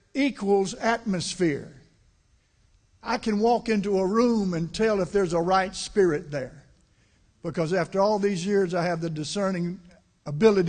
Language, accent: English, American